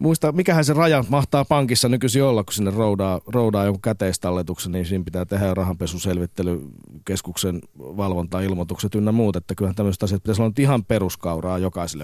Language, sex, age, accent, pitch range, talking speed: Finnish, male, 30-49, native, 95-130 Hz, 160 wpm